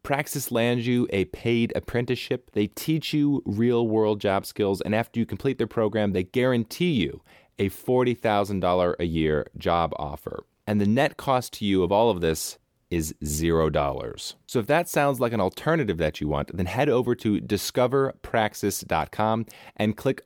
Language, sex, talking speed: English, male, 165 wpm